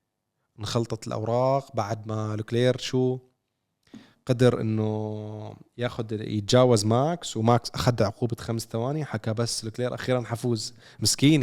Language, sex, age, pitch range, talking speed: Arabic, male, 20-39, 110-125 Hz, 115 wpm